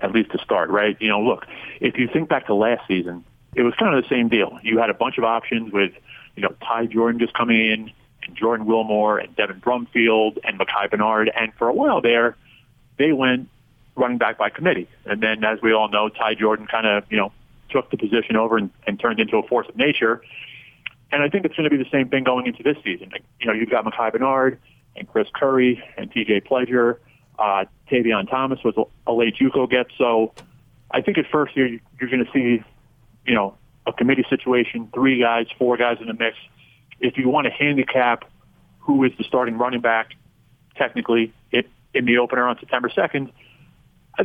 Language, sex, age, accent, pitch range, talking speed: English, male, 40-59, American, 110-130 Hz, 210 wpm